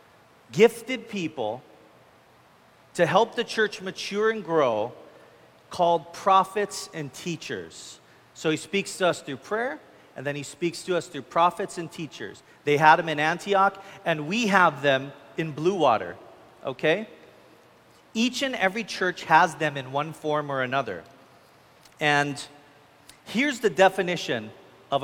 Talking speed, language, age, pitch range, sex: 140 wpm, English, 40-59, 145-195 Hz, male